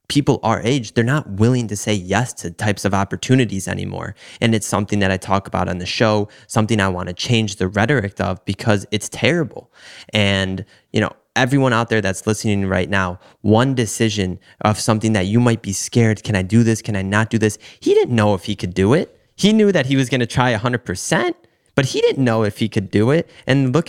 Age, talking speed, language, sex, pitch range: 20-39, 230 wpm, English, male, 100-125 Hz